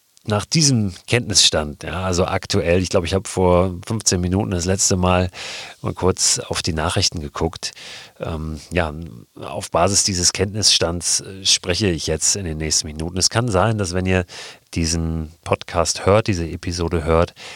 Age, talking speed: 40-59, 160 wpm